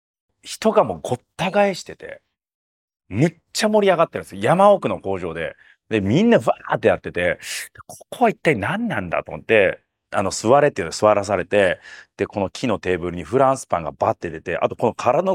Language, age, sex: Japanese, 40-59, male